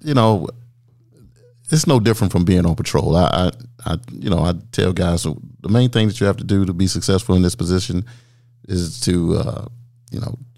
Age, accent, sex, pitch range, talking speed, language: 40-59, American, male, 90-120 Hz, 205 wpm, English